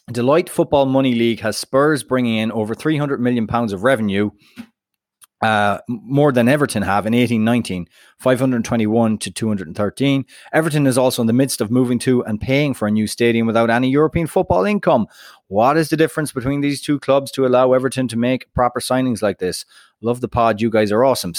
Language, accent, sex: English, Irish, male